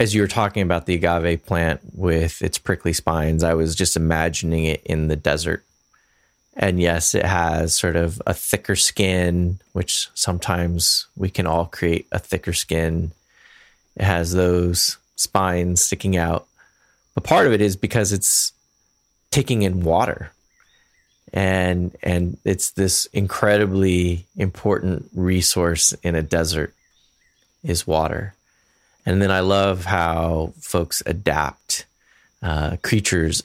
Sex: male